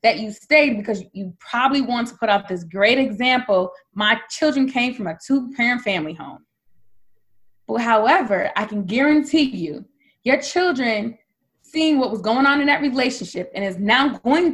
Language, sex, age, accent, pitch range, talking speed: English, female, 20-39, American, 210-275 Hz, 175 wpm